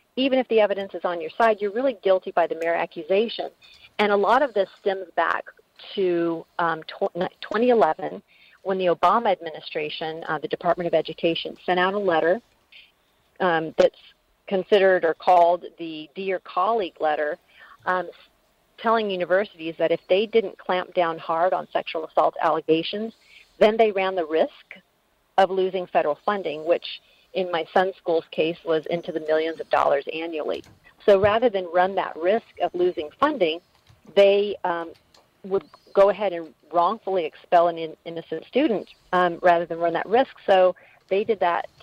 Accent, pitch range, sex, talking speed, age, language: American, 165-200 Hz, female, 160 wpm, 40-59, English